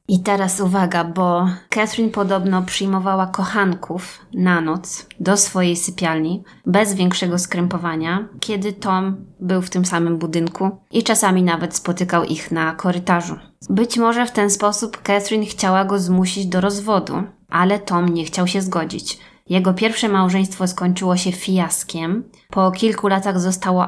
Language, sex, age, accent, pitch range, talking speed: Polish, female, 20-39, native, 175-200 Hz, 145 wpm